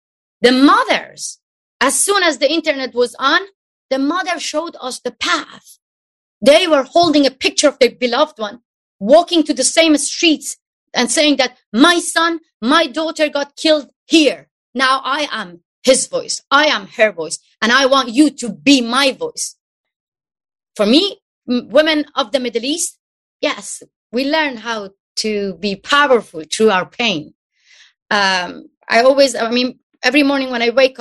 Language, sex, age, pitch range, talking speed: English, female, 30-49, 235-305 Hz, 160 wpm